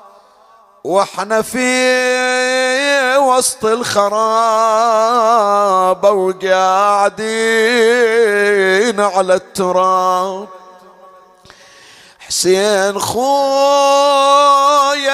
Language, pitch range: Arabic, 200-250 Hz